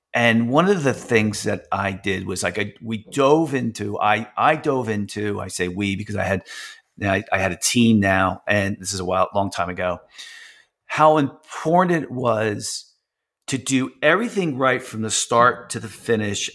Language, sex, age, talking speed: English, male, 40-59, 190 wpm